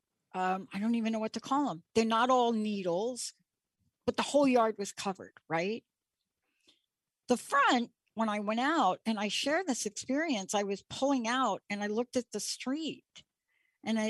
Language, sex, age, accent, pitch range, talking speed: English, female, 60-79, American, 200-255 Hz, 180 wpm